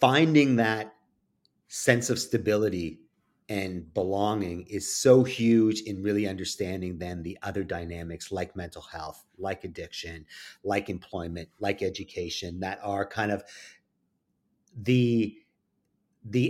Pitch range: 95-115 Hz